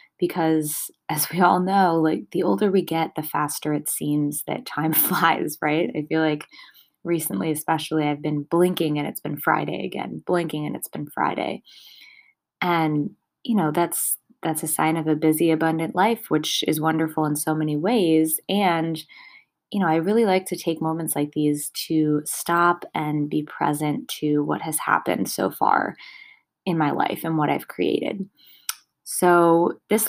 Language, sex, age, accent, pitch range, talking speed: English, female, 20-39, American, 150-175 Hz, 170 wpm